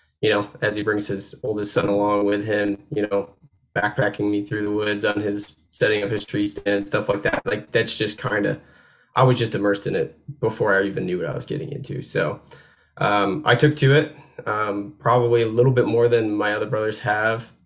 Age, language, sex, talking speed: 10-29, English, male, 225 wpm